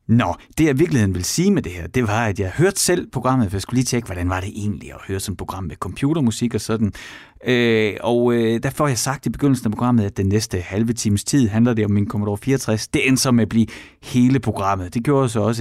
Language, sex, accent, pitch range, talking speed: Danish, male, native, 100-140 Hz, 265 wpm